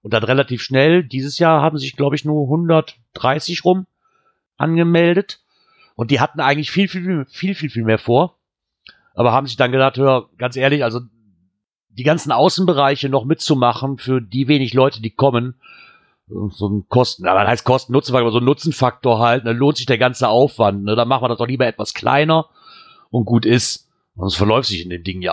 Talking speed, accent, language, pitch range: 190 wpm, German, German, 120-155 Hz